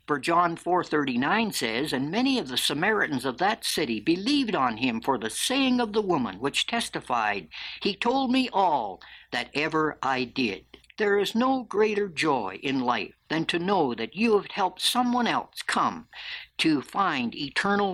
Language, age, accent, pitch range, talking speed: English, 60-79, American, 155-235 Hz, 165 wpm